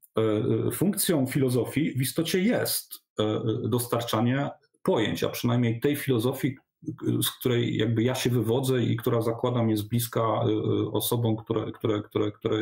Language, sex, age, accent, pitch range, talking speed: Polish, male, 40-59, native, 110-130 Hz, 130 wpm